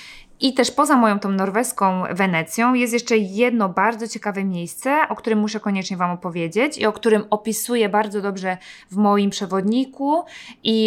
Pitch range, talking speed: 195-240 Hz, 160 wpm